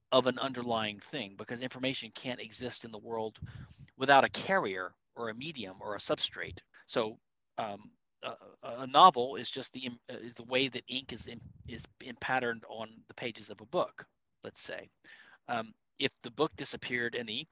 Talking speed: 185 wpm